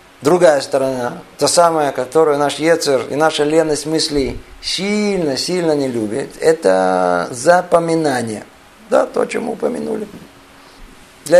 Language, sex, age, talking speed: Russian, male, 50-69, 110 wpm